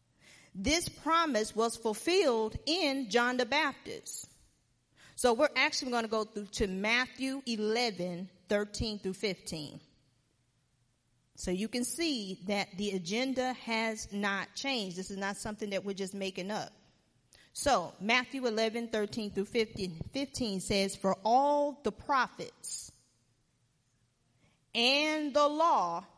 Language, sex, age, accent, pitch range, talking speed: English, female, 40-59, American, 190-275 Hz, 130 wpm